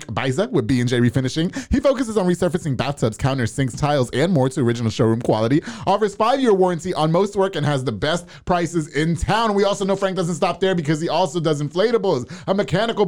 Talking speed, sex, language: 205 wpm, male, English